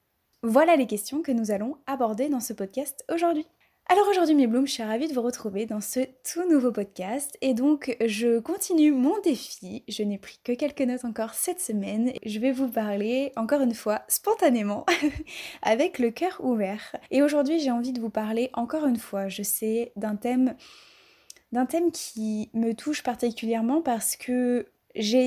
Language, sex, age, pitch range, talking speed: French, female, 20-39, 220-275 Hz, 180 wpm